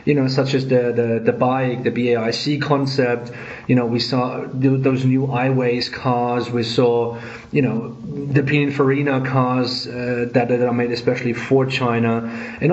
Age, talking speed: 30-49, 165 wpm